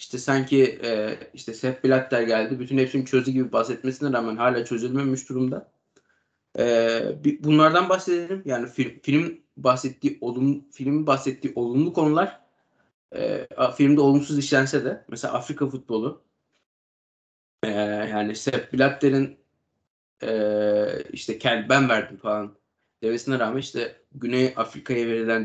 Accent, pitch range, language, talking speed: native, 115-135 Hz, Turkish, 125 wpm